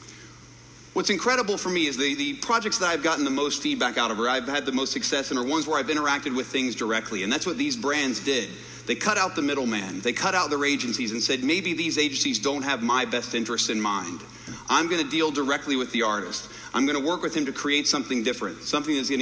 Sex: male